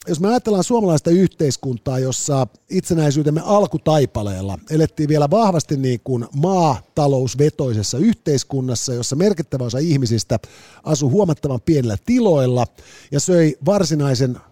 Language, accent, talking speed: Finnish, native, 110 wpm